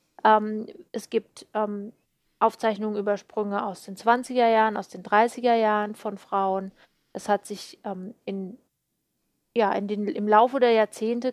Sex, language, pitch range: female, German, 205-235 Hz